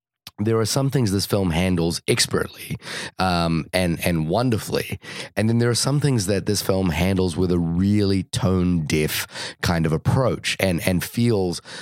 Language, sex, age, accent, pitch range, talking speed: English, male, 30-49, American, 90-110 Hz, 170 wpm